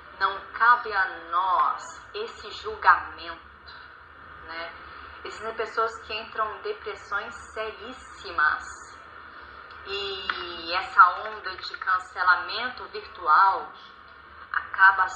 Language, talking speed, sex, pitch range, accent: Portuguese, 85 wpm, female, 200-280 Hz, Brazilian